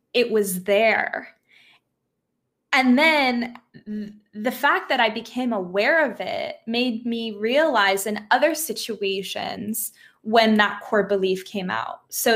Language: English